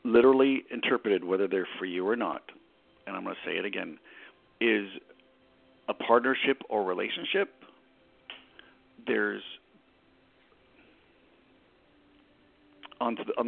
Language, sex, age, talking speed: English, male, 50-69, 100 wpm